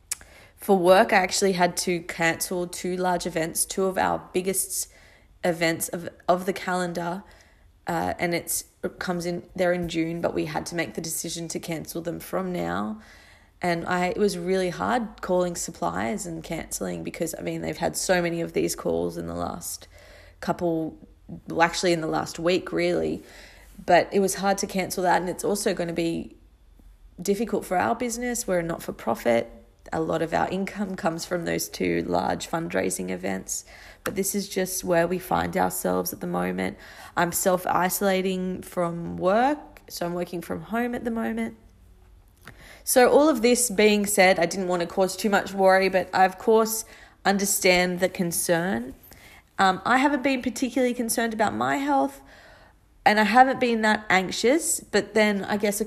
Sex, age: female, 20-39